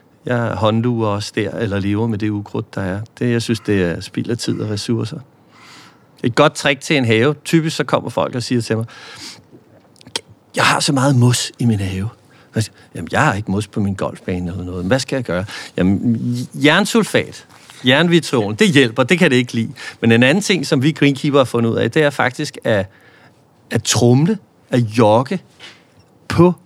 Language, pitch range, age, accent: Danish, 110-145 Hz, 50-69, native